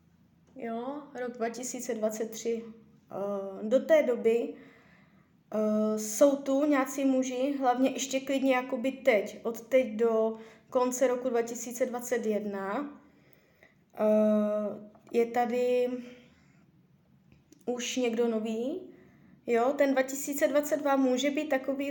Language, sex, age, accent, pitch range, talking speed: Czech, female, 20-39, native, 235-270 Hz, 90 wpm